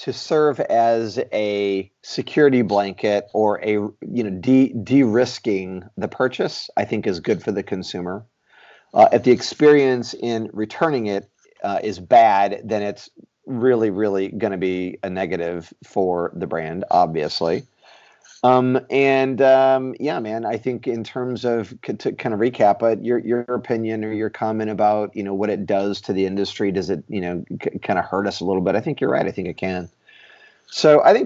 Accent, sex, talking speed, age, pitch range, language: American, male, 185 wpm, 40-59, 100-130 Hz, English